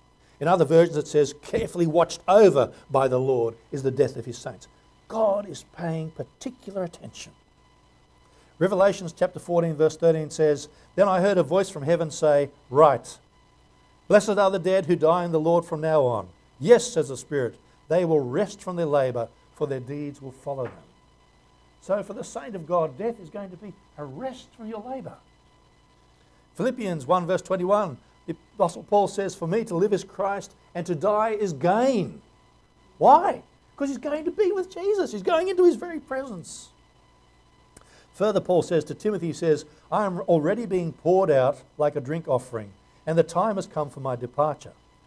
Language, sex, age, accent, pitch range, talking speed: English, male, 60-79, Australian, 145-200 Hz, 185 wpm